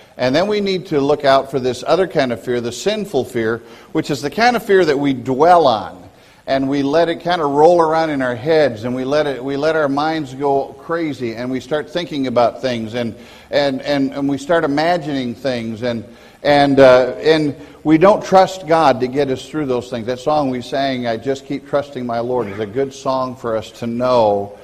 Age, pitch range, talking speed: 50-69, 120-155 Hz, 225 wpm